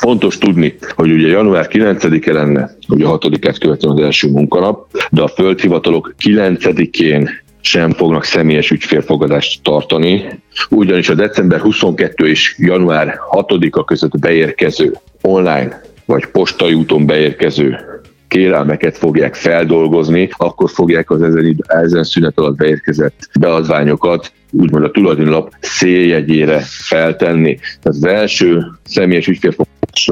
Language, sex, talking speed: Hungarian, male, 120 wpm